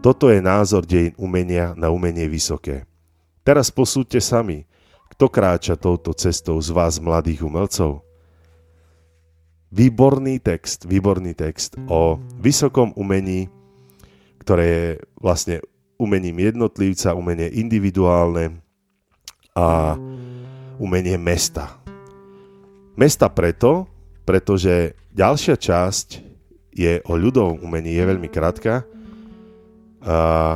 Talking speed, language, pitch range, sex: 95 wpm, Slovak, 85-115 Hz, male